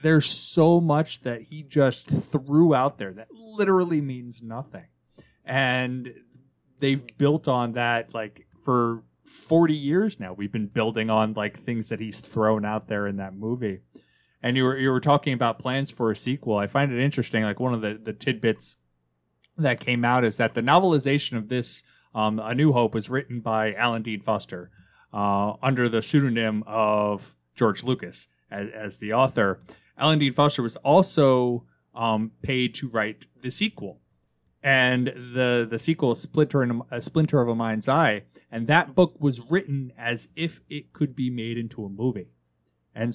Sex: male